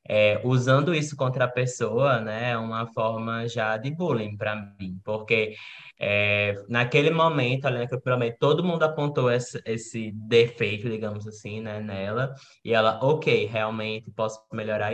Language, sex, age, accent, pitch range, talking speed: Portuguese, male, 10-29, Brazilian, 115-145 Hz, 155 wpm